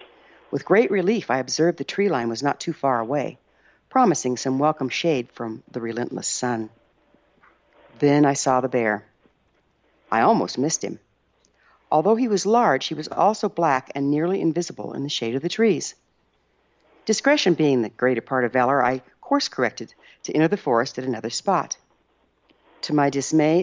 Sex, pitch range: female, 125-180 Hz